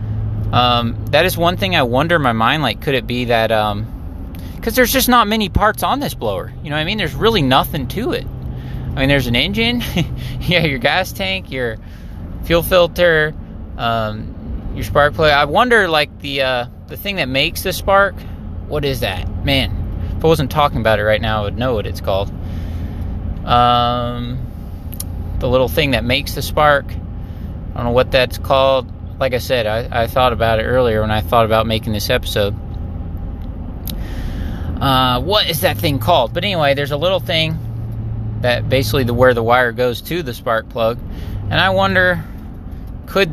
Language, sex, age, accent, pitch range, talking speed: English, male, 20-39, American, 100-135 Hz, 190 wpm